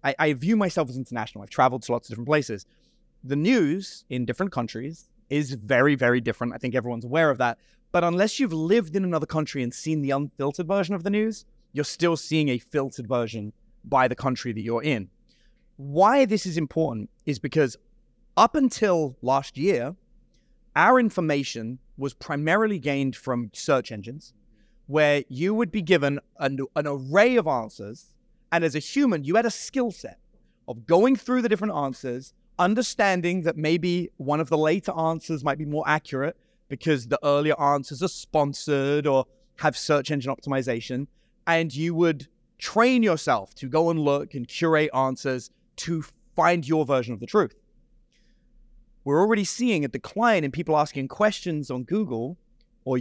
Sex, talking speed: male, 170 wpm